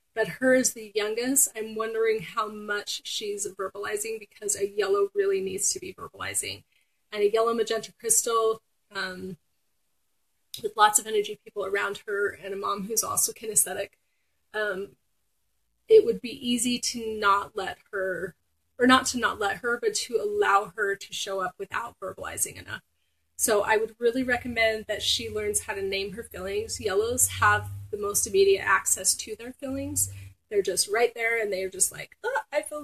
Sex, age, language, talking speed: female, 30-49, English, 175 wpm